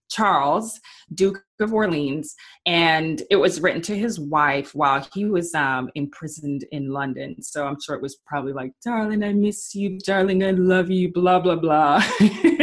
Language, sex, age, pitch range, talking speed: English, female, 20-39, 145-190 Hz, 170 wpm